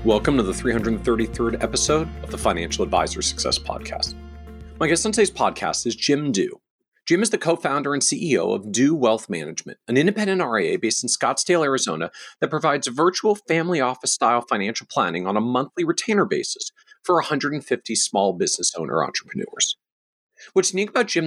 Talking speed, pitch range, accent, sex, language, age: 165 wpm, 125-190 Hz, American, male, English, 40-59